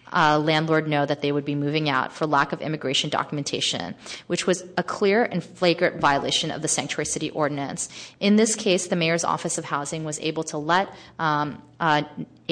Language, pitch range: English, 145-175 Hz